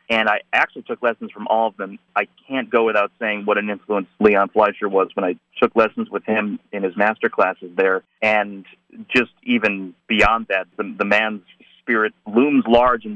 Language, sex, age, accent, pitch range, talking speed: English, male, 40-59, American, 95-115 Hz, 195 wpm